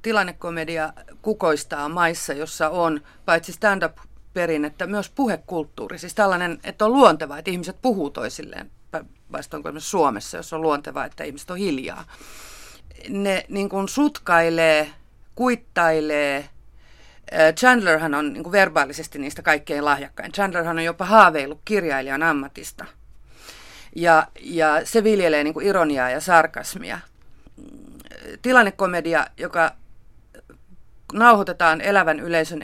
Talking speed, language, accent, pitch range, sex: 115 wpm, Finnish, native, 155-195 Hz, female